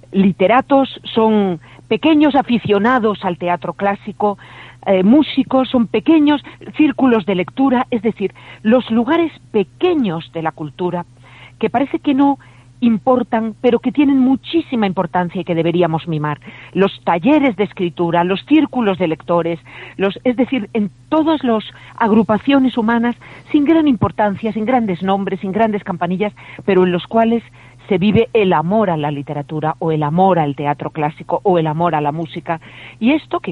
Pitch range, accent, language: 165-235 Hz, Spanish, Spanish